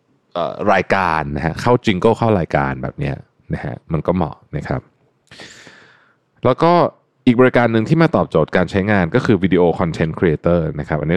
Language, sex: Thai, male